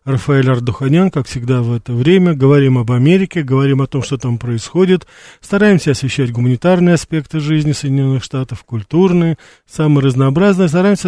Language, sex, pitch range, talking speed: Russian, male, 135-170 Hz, 145 wpm